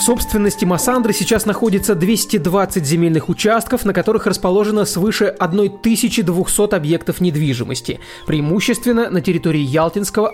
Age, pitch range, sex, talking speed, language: 30-49, 155-205 Hz, male, 110 wpm, Russian